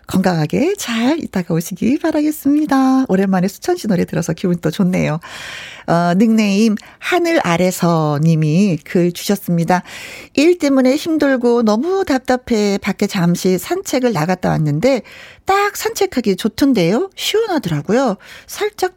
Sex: female